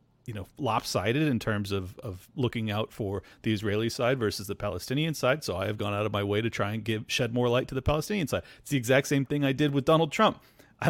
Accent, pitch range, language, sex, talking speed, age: American, 110-135 Hz, English, male, 260 wpm, 40-59